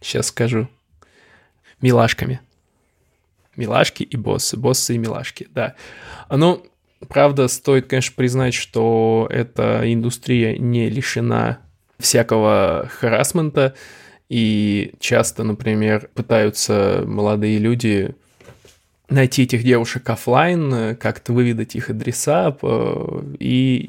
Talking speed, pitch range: 95 wpm, 115-135 Hz